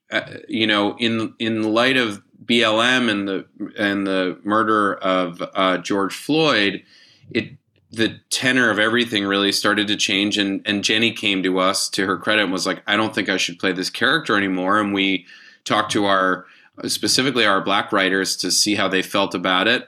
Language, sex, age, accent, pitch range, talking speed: English, male, 20-39, American, 95-110 Hz, 190 wpm